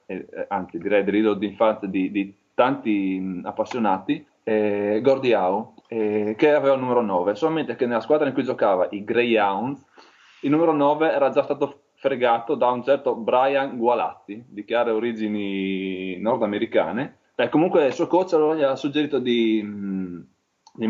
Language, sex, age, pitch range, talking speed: Italian, male, 20-39, 105-135 Hz, 160 wpm